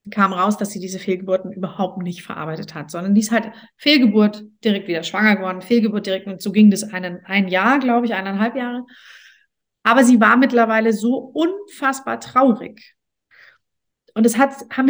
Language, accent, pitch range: German, German, 195-240 Hz